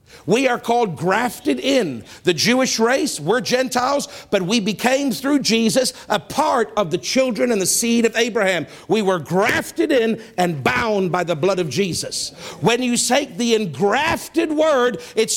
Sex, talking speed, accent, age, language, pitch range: male, 170 wpm, American, 50-69, English, 185-255 Hz